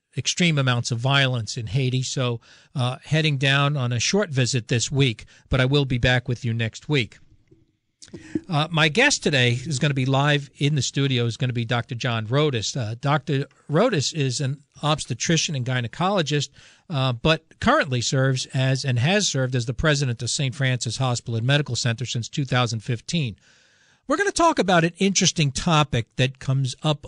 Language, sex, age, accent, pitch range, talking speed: English, male, 50-69, American, 125-155 Hz, 180 wpm